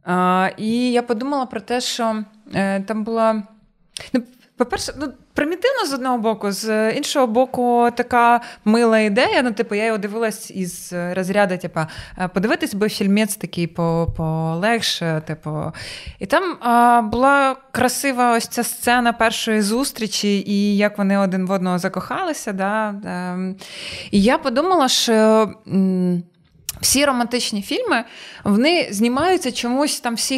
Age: 20-39